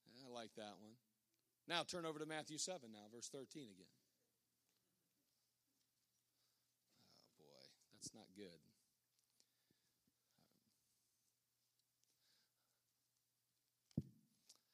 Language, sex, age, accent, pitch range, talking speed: English, male, 40-59, American, 110-130 Hz, 75 wpm